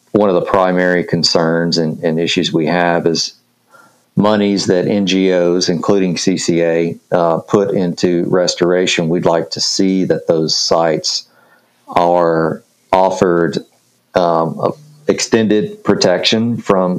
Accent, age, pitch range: American, 40-59, 85-100 Hz